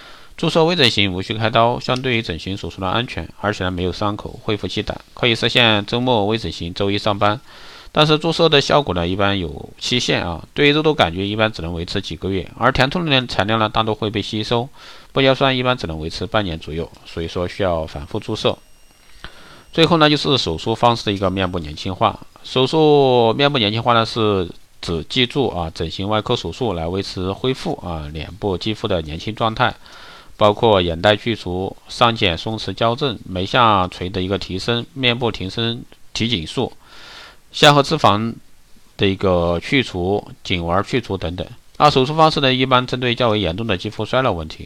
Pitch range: 90-125 Hz